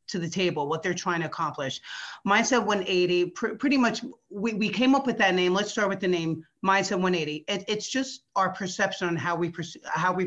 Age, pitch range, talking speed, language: 40-59, 175-210 Hz, 220 wpm, English